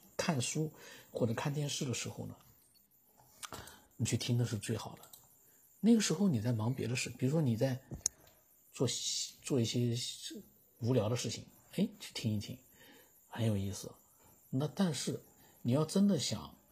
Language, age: Chinese, 50-69